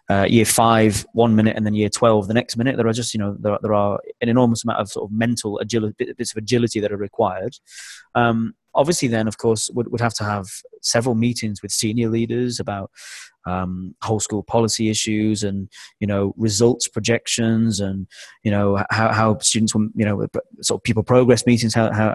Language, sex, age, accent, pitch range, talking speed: English, male, 20-39, British, 105-120 Hz, 205 wpm